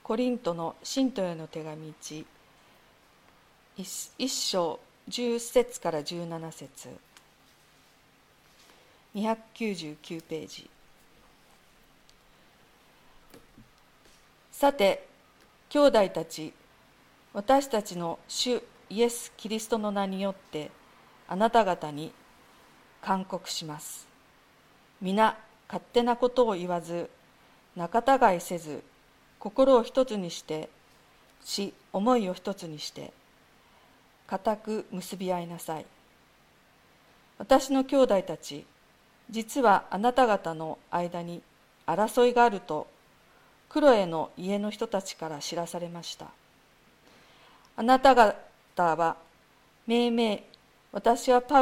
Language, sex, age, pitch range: Japanese, female, 50-69, 170-235 Hz